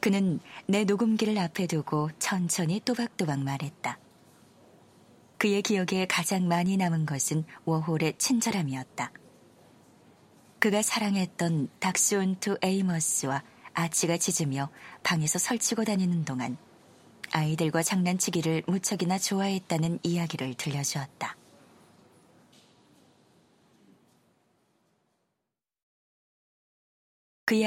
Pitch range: 160-200 Hz